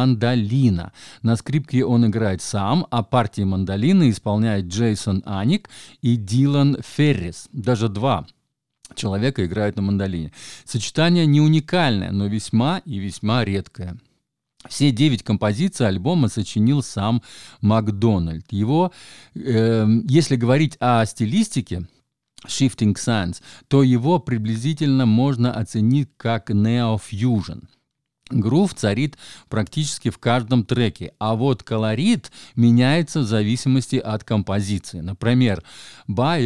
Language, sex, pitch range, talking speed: Russian, male, 105-140 Hz, 110 wpm